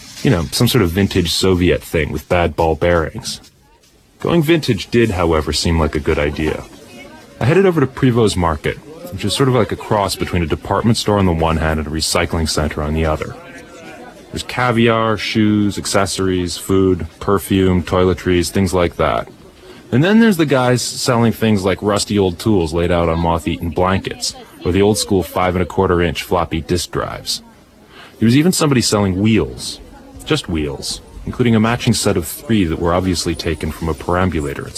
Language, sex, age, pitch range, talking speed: English, male, 30-49, 85-125 Hz, 180 wpm